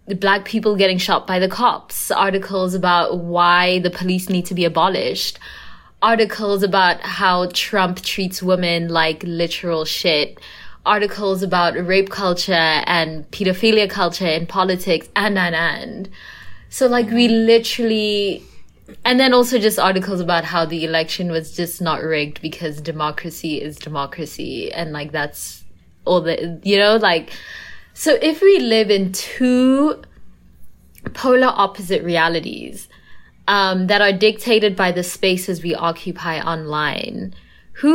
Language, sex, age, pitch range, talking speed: English, female, 20-39, 165-205 Hz, 140 wpm